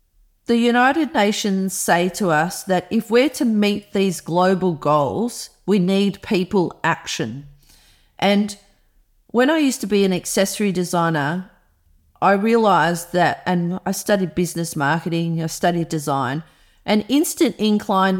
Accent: Australian